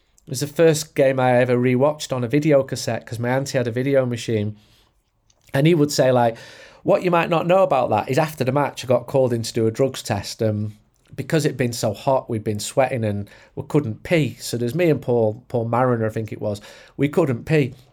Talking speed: 240 wpm